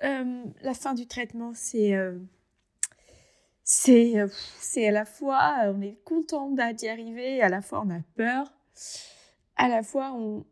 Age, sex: 20-39, female